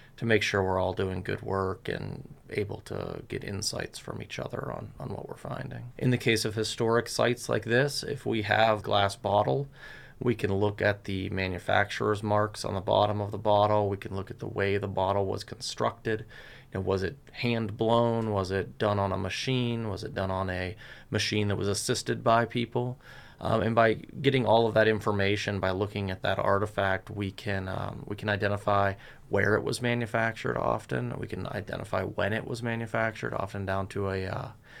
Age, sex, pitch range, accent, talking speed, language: 30-49, male, 100-115 Hz, American, 200 wpm, English